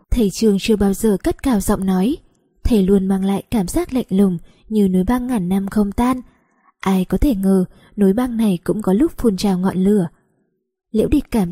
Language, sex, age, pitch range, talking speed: Vietnamese, female, 20-39, 190-235 Hz, 215 wpm